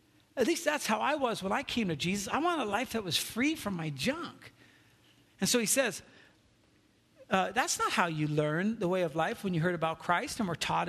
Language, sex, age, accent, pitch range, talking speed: English, male, 50-69, American, 165-240 Hz, 235 wpm